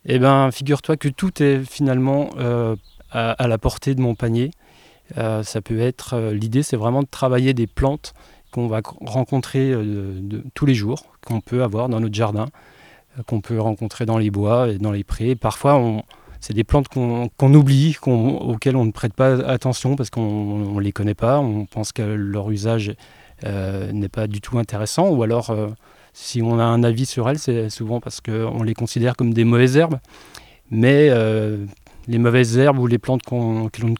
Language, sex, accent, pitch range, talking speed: French, male, French, 110-130 Hz, 205 wpm